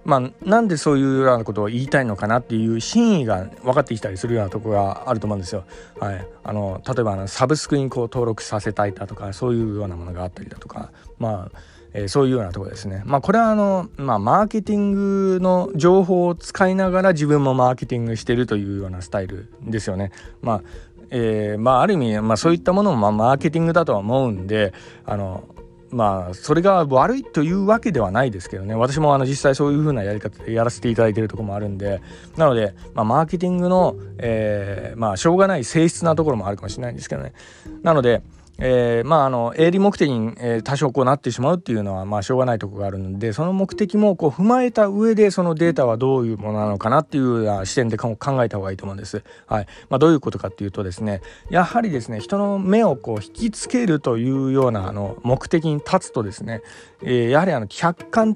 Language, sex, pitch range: Japanese, male, 105-165 Hz